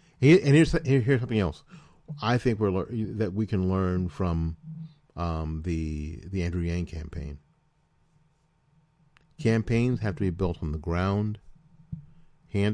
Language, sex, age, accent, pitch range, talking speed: English, male, 40-59, American, 90-150 Hz, 130 wpm